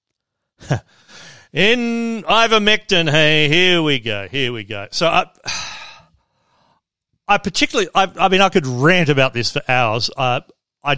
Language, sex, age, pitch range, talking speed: English, male, 40-59, 110-155 Hz, 135 wpm